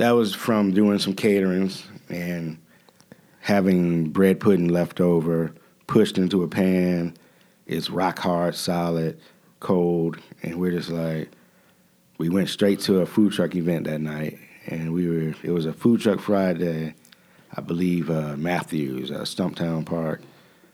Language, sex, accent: English, male, American